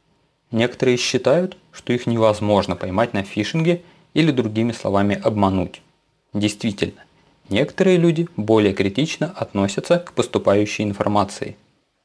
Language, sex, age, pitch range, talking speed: Russian, male, 20-39, 105-135 Hz, 105 wpm